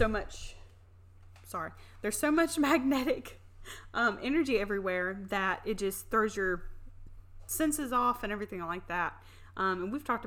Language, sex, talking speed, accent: English, female, 145 wpm, American